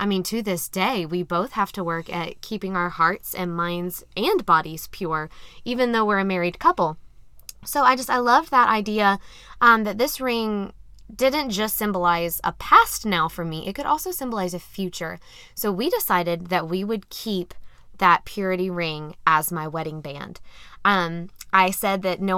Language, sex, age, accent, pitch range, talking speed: English, female, 20-39, American, 175-210 Hz, 185 wpm